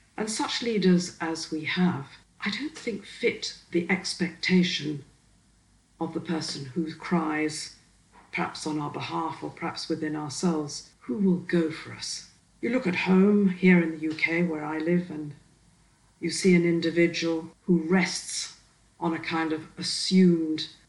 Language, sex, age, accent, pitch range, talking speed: English, female, 60-79, British, 155-180 Hz, 150 wpm